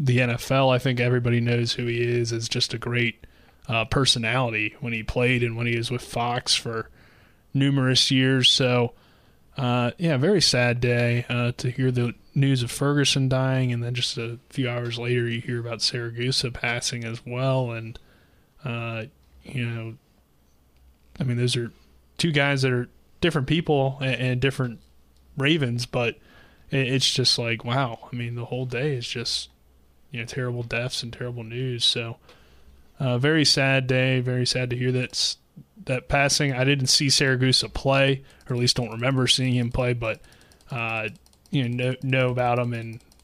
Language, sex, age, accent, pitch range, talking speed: English, male, 20-39, American, 115-130 Hz, 175 wpm